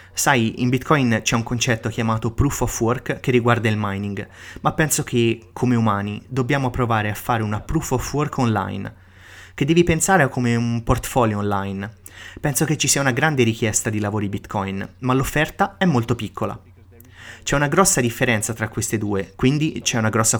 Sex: male